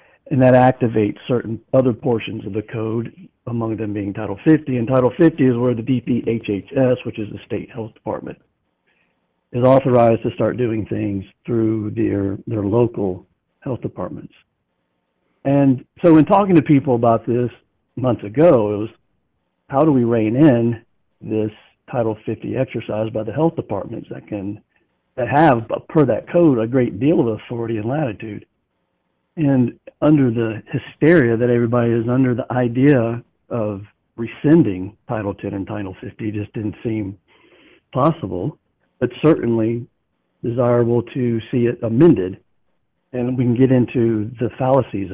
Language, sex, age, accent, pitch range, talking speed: English, male, 50-69, American, 110-130 Hz, 150 wpm